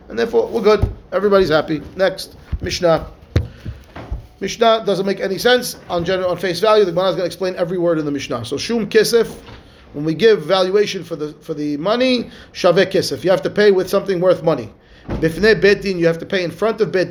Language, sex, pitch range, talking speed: English, male, 165-215 Hz, 205 wpm